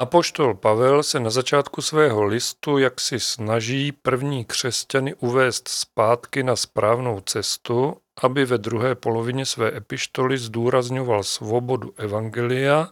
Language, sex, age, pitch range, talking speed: Czech, male, 40-59, 105-130 Hz, 120 wpm